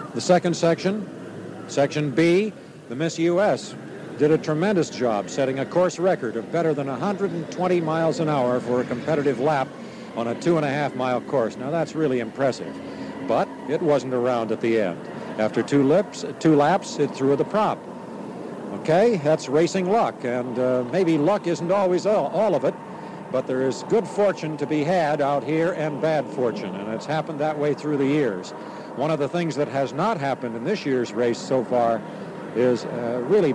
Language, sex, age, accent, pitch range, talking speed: English, male, 60-79, American, 125-165 Hz, 185 wpm